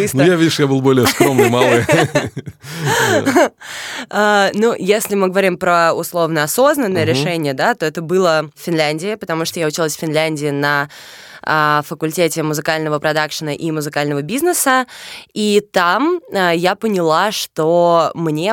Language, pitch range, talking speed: Russian, 150-175 Hz, 125 wpm